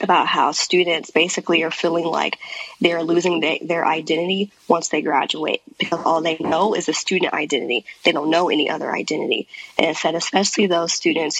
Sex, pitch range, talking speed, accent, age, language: female, 165-185 Hz, 185 wpm, American, 20-39, English